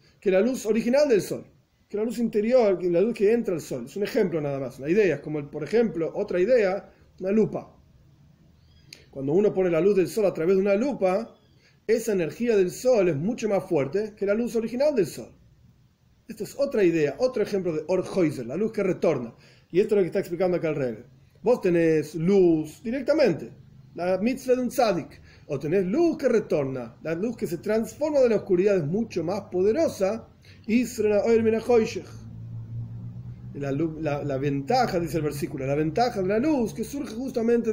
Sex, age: male, 40-59